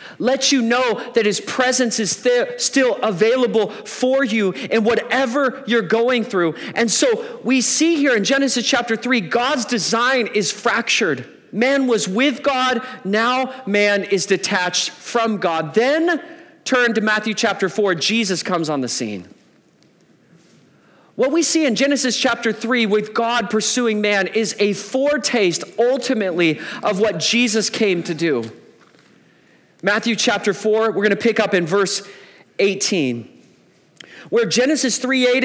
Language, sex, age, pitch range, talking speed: English, male, 40-59, 195-245 Hz, 145 wpm